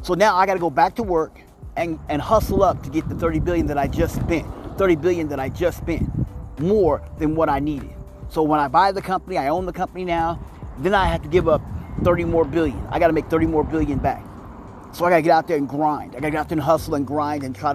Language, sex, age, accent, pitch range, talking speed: English, male, 30-49, American, 140-180 Hz, 265 wpm